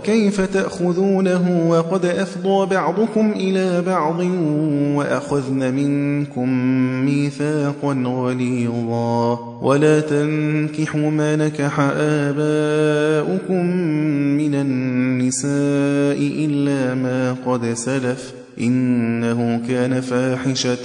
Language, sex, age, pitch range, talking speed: Persian, male, 20-39, 140-160 Hz, 70 wpm